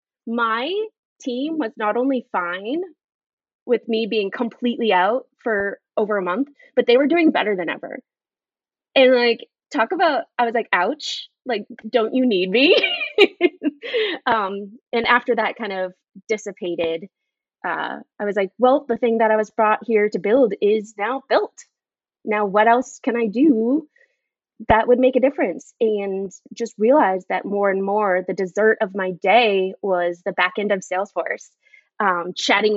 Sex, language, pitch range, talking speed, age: female, English, 190-245 Hz, 165 wpm, 20-39